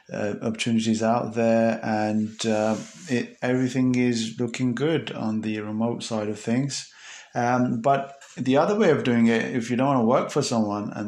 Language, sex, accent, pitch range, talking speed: English, male, British, 110-125 Hz, 185 wpm